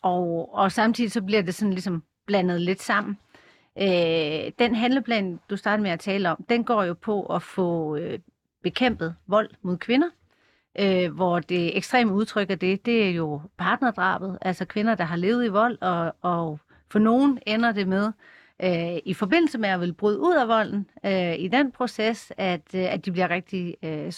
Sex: female